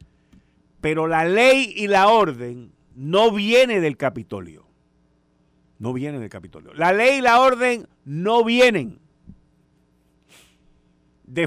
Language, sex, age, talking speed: Spanish, male, 50-69, 115 wpm